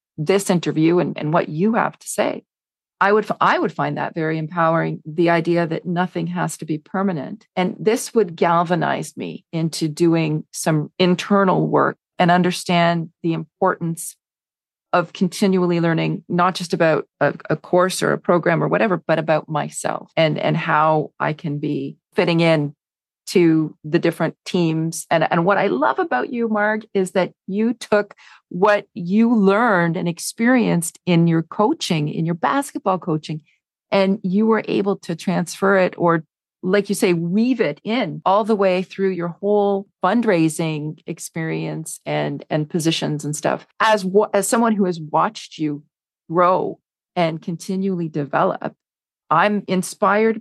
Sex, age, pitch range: female, 40-59, 160-195 Hz